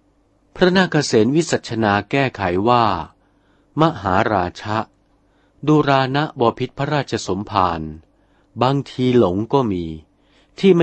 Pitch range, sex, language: 95-130 Hz, male, Thai